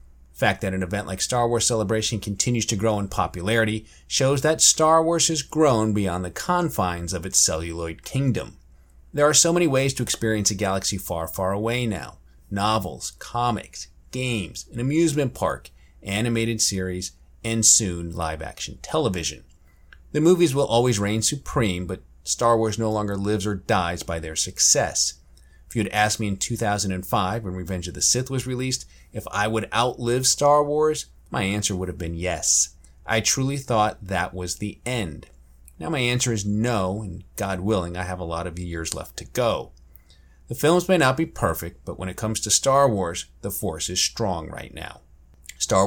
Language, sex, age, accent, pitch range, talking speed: English, male, 30-49, American, 90-120 Hz, 180 wpm